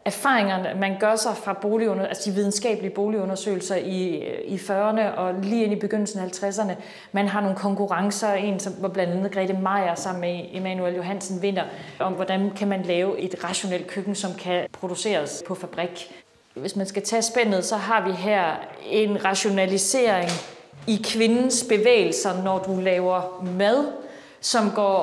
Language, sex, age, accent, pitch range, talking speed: Danish, female, 30-49, native, 190-215 Hz, 160 wpm